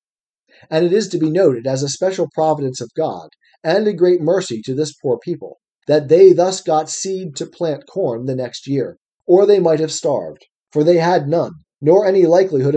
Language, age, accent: English, 40-59, American